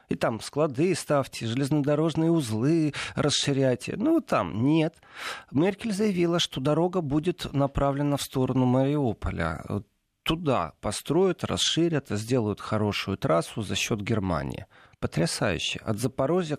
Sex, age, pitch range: male, 40-59, 110-150 Hz